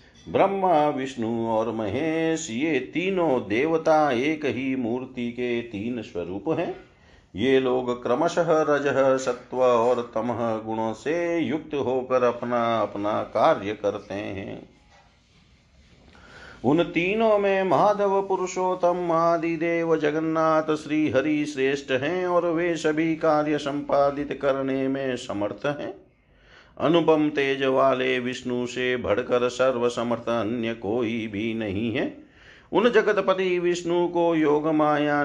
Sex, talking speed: male, 115 wpm